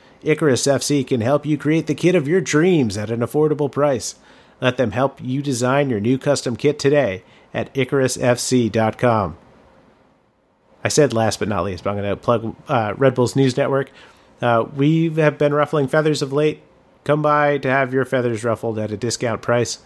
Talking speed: 185 wpm